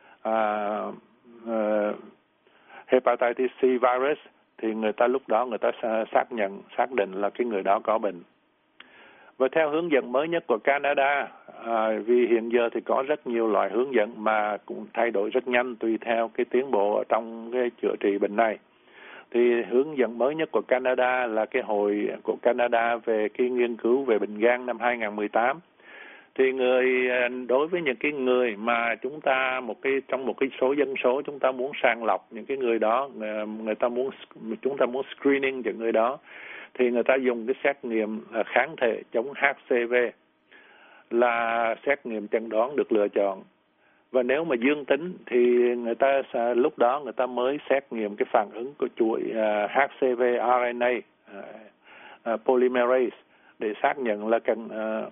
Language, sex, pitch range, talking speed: Vietnamese, male, 110-130 Hz, 175 wpm